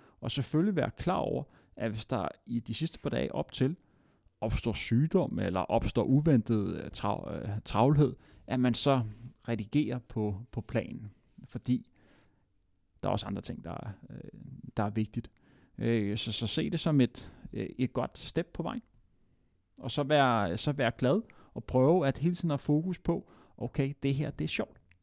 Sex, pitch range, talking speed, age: male, 115-145 Hz, 170 wpm, 30-49